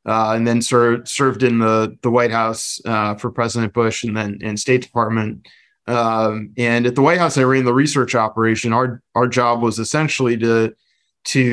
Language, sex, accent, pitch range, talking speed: English, male, American, 115-130 Hz, 195 wpm